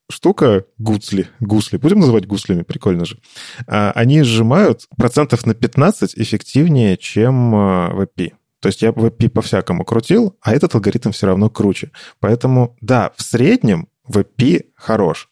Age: 20-39